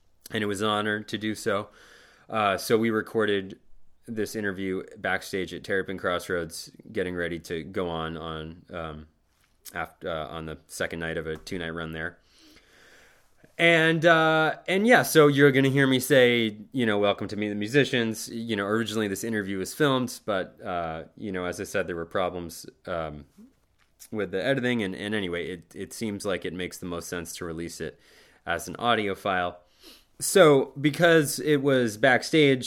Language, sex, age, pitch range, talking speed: English, male, 20-39, 90-120 Hz, 180 wpm